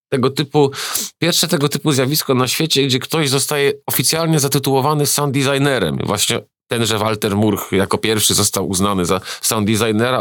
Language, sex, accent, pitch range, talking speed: Polish, male, native, 110-140 Hz, 160 wpm